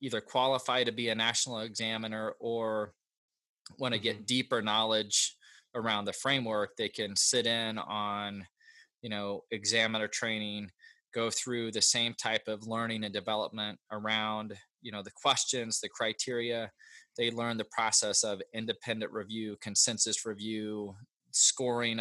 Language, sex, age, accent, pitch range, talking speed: English, male, 20-39, American, 105-115 Hz, 140 wpm